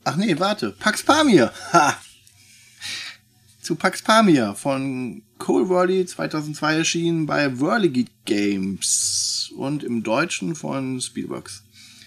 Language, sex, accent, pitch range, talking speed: German, male, German, 115-160 Hz, 105 wpm